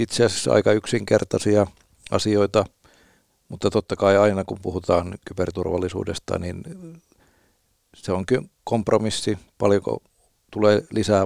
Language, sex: Finnish, male